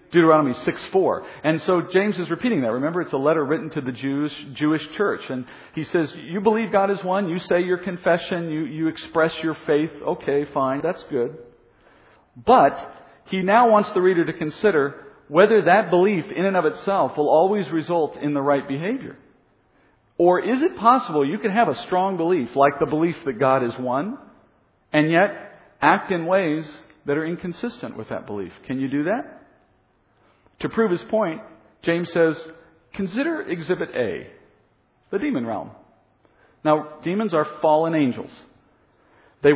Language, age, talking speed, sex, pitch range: English, 50-69, 170 wpm, male, 145-195 Hz